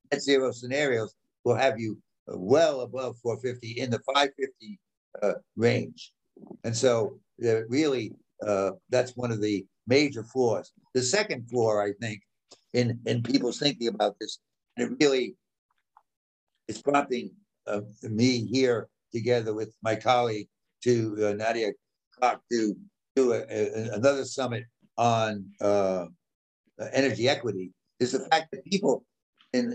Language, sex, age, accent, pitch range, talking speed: English, male, 60-79, American, 115-140 Hz, 135 wpm